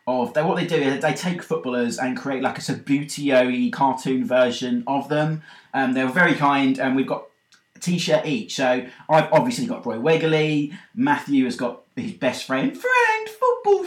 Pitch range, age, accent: 130-205 Hz, 20-39, British